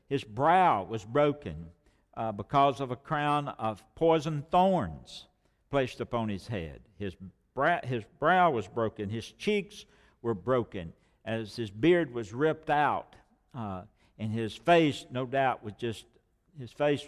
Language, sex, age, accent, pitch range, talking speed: English, male, 60-79, American, 110-140 Hz, 150 wpm